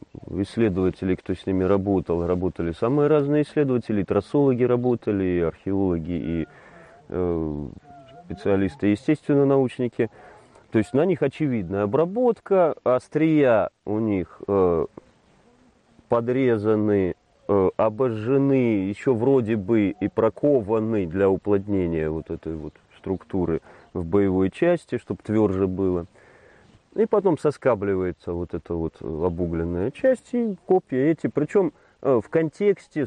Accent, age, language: native, 30-49, Russian